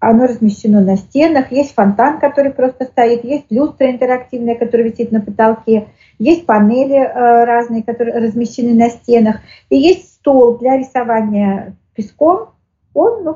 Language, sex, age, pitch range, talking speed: Russian, female, 40-59, 220-265 Hz, 140 wpm